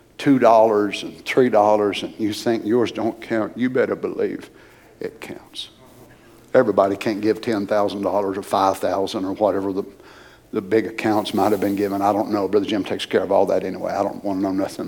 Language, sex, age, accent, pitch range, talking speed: English, male, 60-79, American, 105-125 Hz, 185 wpm